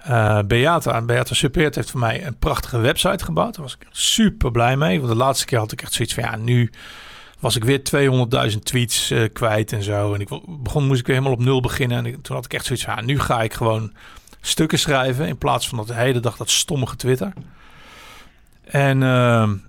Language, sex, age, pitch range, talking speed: Dutch, male, 50-69, 115-145 Hz, 220 wpm